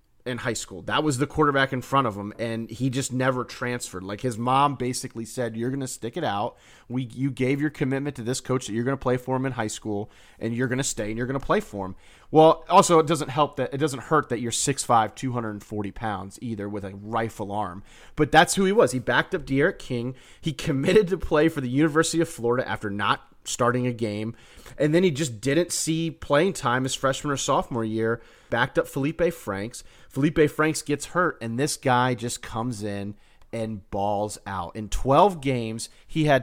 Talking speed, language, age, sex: 215 wpm, English, 30-49, male